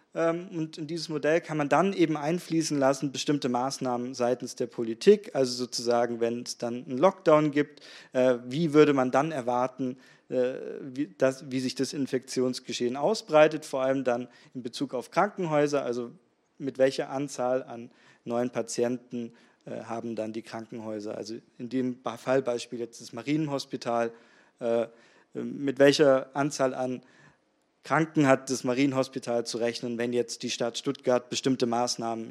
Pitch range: 120-155 Hz